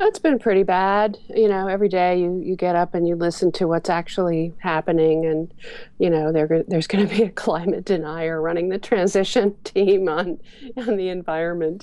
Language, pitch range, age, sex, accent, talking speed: English, 165-210 Hz, 50-69, female, American, 195 wpm